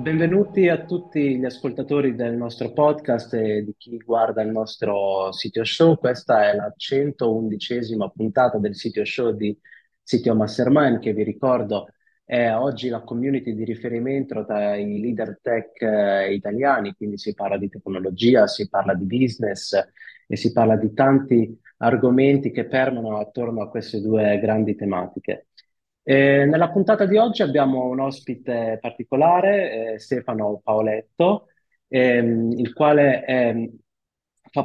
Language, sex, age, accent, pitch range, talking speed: Italian, male, 30-49, native, 110-135 Hz, 140 wpm